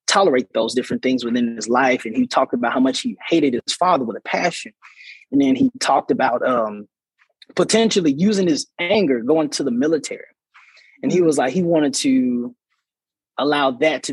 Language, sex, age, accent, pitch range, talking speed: English, male, 20-39, American, 135-205 Hz, 185 wpm